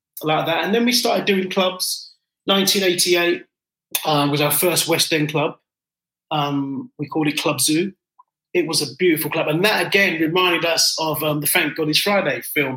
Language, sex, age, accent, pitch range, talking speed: English, male, 30-49, British, 150-180 Hz, 190 wpm